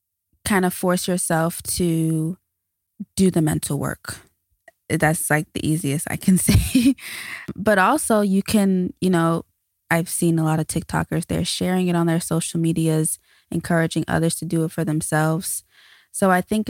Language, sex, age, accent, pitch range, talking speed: English, female, 20-39, American, 150-180 Hz, 160 wpm